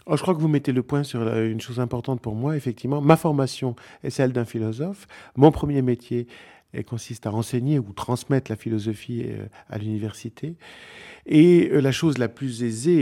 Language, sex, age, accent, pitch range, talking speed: French, male, 50-69, French, 115-165 Hz, 180 wpm